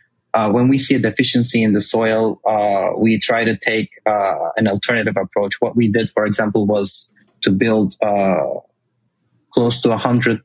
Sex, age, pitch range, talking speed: male, 30-49, 105-120 Hz, 170 wpm